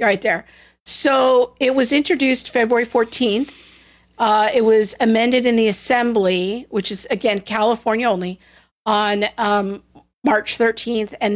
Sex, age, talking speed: female, 50-69, 130 wpm